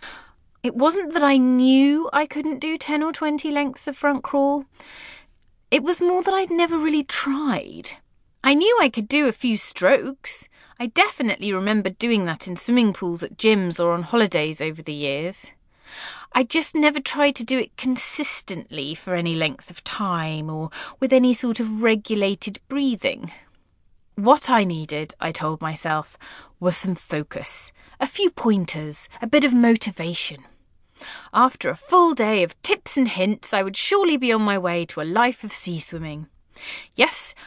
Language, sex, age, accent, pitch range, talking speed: English, female, 30-49, British, 170-260 Hz, 165 wpm